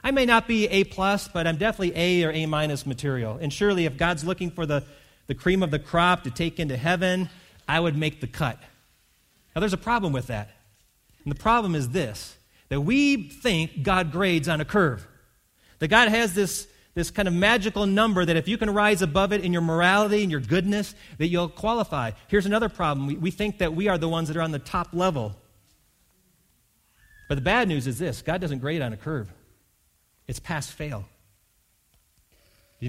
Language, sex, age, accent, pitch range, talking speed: English, male, 40-59, American, 115-180 Hz, 205 wpm